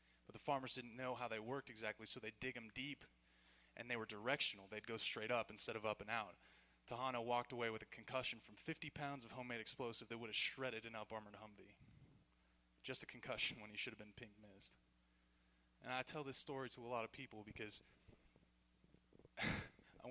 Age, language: 20-39, English